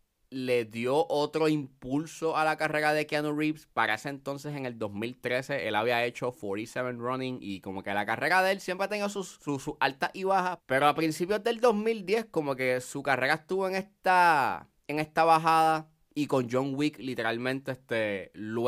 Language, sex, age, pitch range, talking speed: Spanish, male, 20-39, 115-150 Hz, 190 wpm